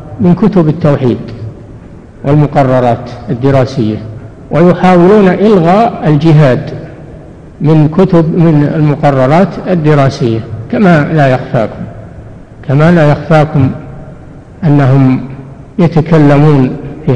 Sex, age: male, 60-79